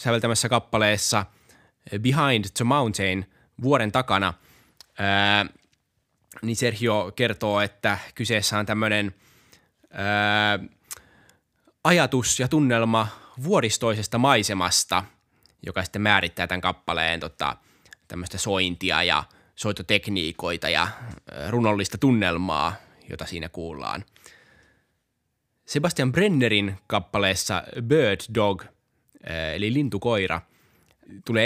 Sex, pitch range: male, 95-115 Hz